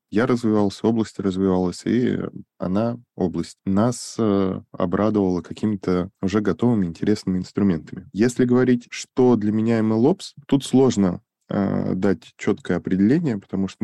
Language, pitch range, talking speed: Russian, 95-115 Hz, 120 wpm